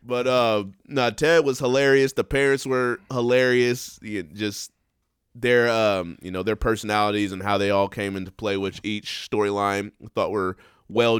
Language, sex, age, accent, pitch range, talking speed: English, male, 20-39, American, 105-130 Hz, 160 wpm